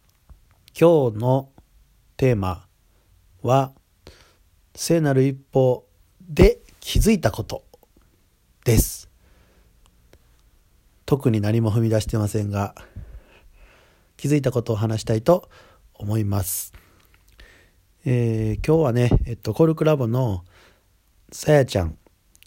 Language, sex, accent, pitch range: Japanese, male, native, 95-130 Hz